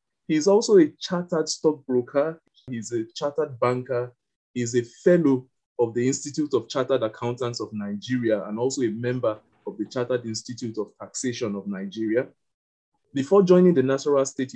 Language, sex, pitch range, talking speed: English, male, 115-145 Hz, 155 wpm